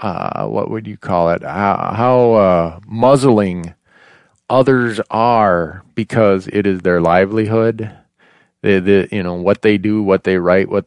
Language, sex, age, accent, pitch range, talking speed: English, male, 40-59, American, 90-120 Hz, 150 wpm